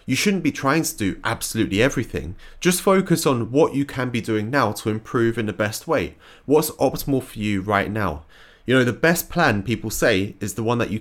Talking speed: 225 wpm